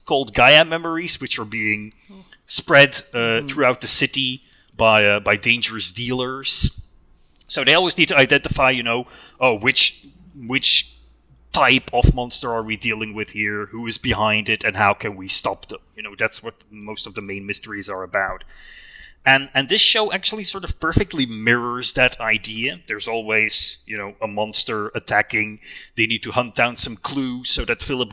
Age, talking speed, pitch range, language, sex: 30-49, 180 wpm, 105-135 Hz, English, male